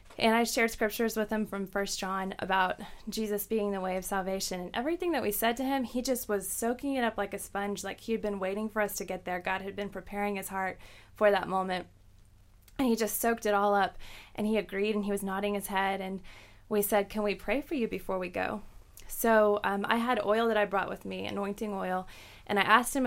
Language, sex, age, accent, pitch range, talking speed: English, female, 20-39, American, 190-220 Hz, 245 wpm